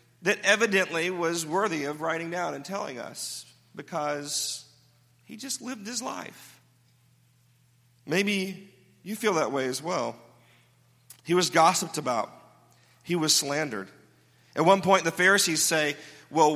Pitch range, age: 125-175 Hz, 40-59